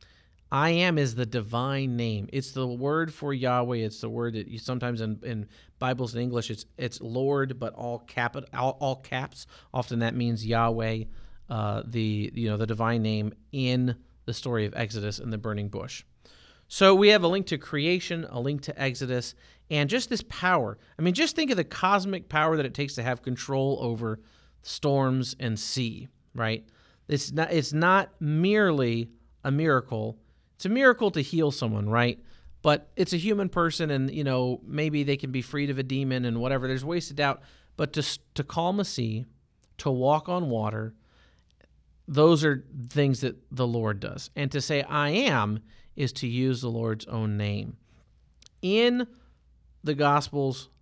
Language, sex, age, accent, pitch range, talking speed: English, male, 40-59, American, 115-150 Hz, 180 wpm